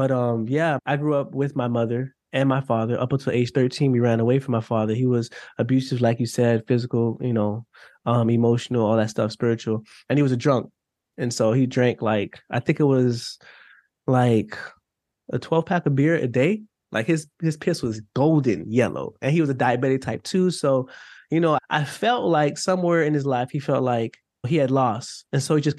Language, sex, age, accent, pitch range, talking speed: English, male, 20-39, American, 120-145 Hz, 215 wpm